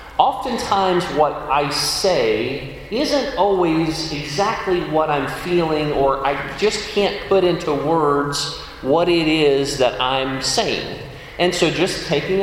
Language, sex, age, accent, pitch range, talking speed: English, male, 40-59, American, 115-155 Hz, 130 wpm